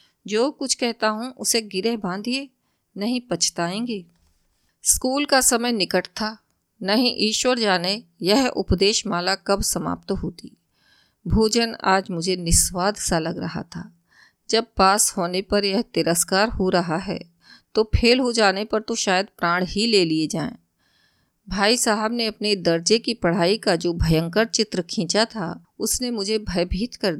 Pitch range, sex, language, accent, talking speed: 180-225 Hz, female, Hindi, native, 150 wpm